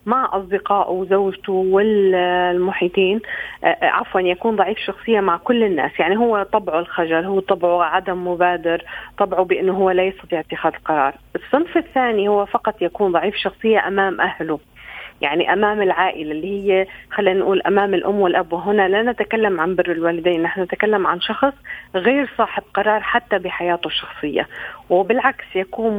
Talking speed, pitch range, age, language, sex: 145 wpm, 180-220 Hz, 40-59, Arabic, female